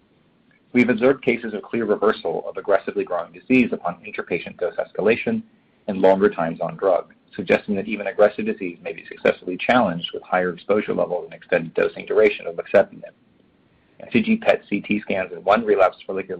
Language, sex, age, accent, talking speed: English, male, 40-59, American, 170 wpm